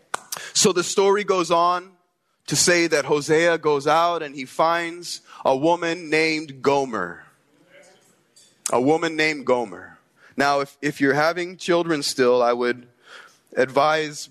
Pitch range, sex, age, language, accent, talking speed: 140-175 Hz, male, 20-39, English, American, 135 wpm